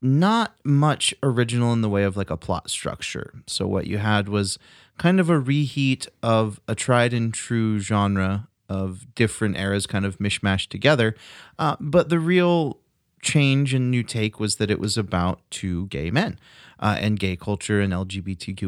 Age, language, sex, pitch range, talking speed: 30-49, English, male, 100-125 Hz, 175 wpm